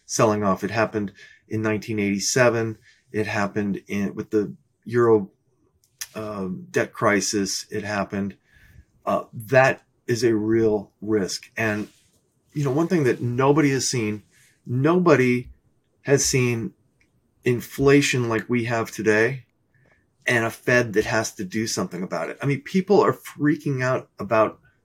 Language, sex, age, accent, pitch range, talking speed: English, male, 30-49, American, 110-135 Hz, 135 wpm